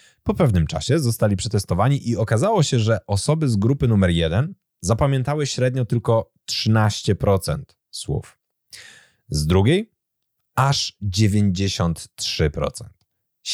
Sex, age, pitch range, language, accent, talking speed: male, 30-49, 95-125 Hz, Polish, native, 100 wpm